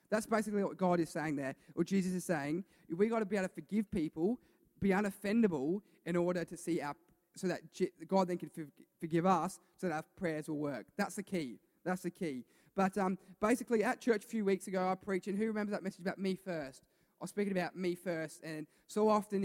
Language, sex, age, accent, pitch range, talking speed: English, male, 20-39, Australian, 170-200 Hz, 225 wpm